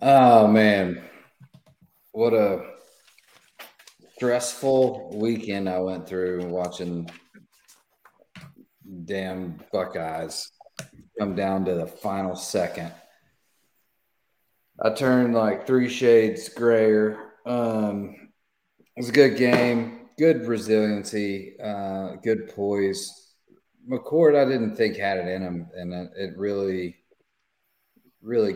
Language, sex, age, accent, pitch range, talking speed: English, male, 40-59, American, 85-110 Hz, 100 wpm